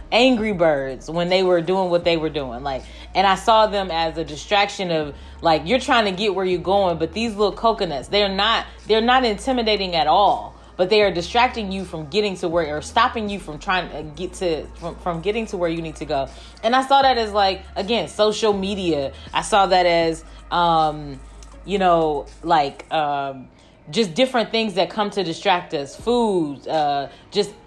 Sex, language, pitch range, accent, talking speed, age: female, English, 165-225 Hz, American, 200 wpm, 20-39